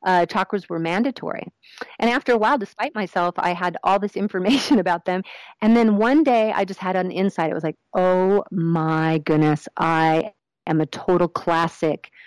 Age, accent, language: 40-59, American, English